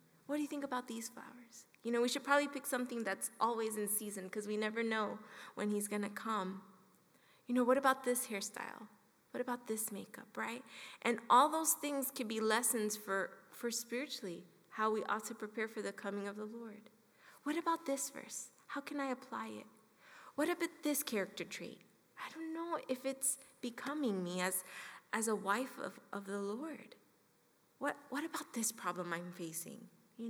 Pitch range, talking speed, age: 205-250 Hz, 190 wpm, 20-39